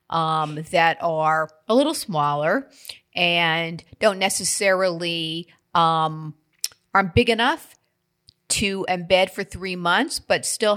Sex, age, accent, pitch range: female, 50-69, American, 165-200 Hz